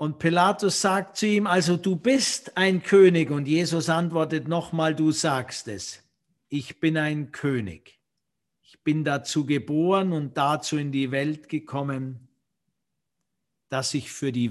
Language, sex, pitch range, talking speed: German, male, 145-180 Hz, 145 wpm